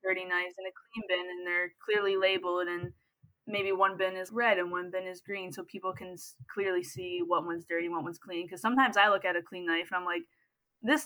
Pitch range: 180-205 Hz